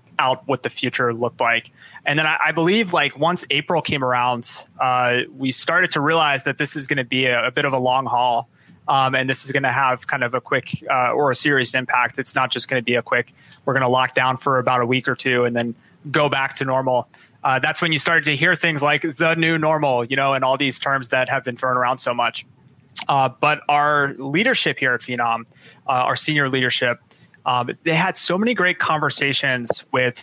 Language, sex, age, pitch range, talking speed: English, male, 20-39, 125-150 Hz, 235 wpm